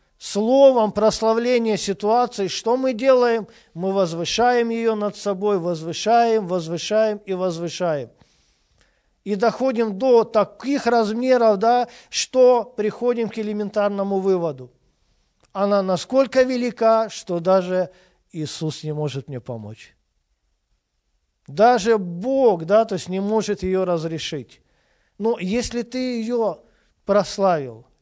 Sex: male